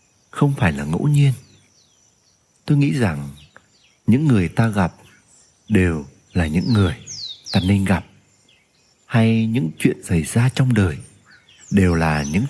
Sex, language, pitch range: male, Vietnamese, 85-120 Hz